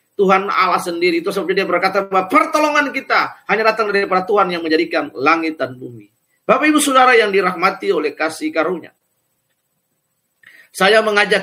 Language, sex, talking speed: Indonesian, male, 150 wpm